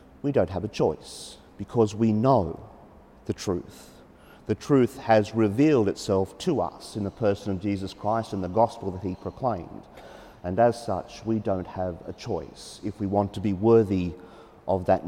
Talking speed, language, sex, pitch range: 180 wpm, English, male, 100-130 Hz